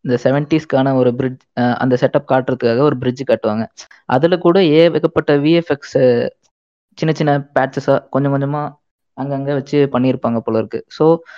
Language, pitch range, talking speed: Tamil, 130-160 Hz, 140 wpm